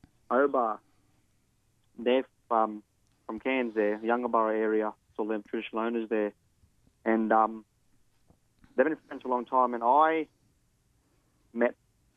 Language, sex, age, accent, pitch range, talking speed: English, male, 30-49, Australian, 110-125 Hz, 140 wpm